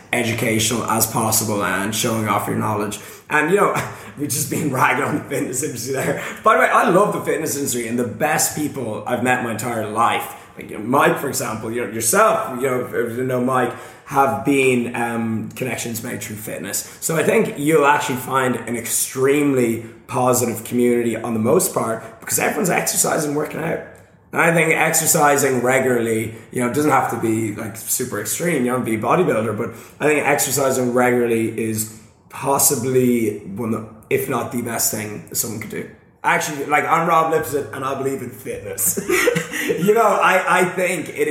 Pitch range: 115-145 Hz